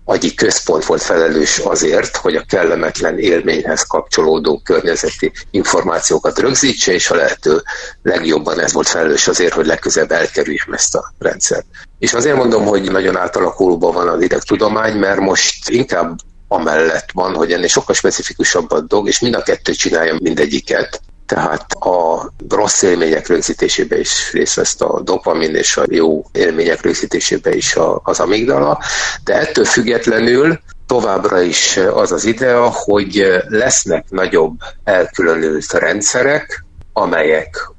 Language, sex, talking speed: Hungarian, male, 135 wpm